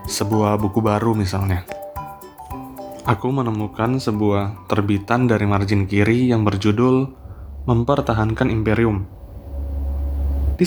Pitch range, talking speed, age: 95-115 Hz, 90 wpm, 20-39